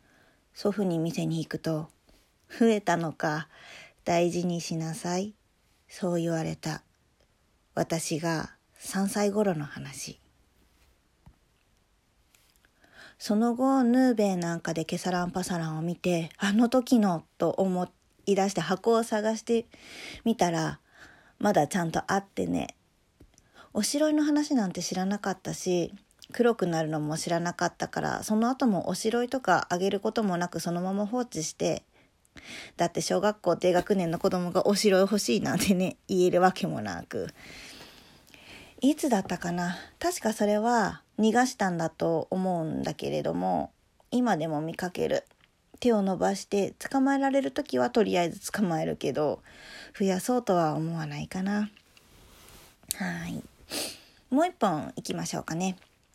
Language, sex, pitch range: Japanese, female, 170-220 Hz